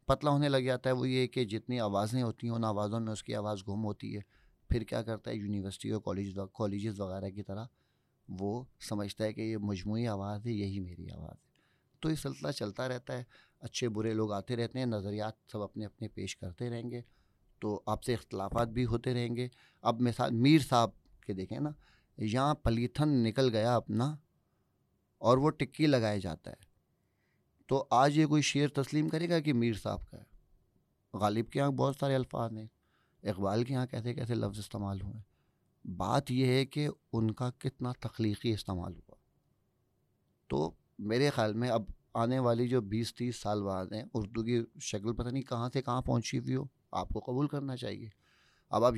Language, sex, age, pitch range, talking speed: English, male, 30-49, 105-130 Hz, 175 wpm